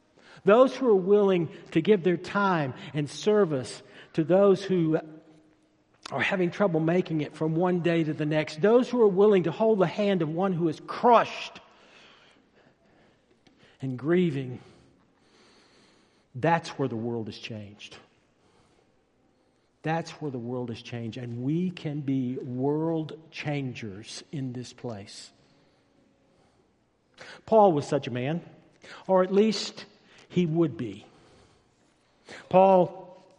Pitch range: 145-190 Hz